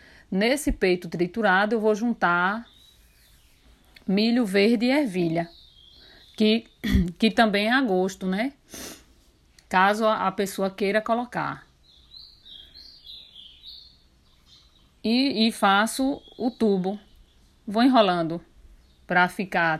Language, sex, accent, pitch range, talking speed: Portuguese, female, Brazilian, 165-220 Hz, 95 wpm